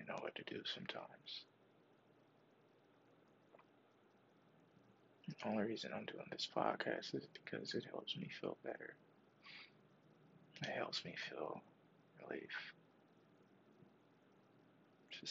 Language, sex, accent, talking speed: English, male, American, 100 wpm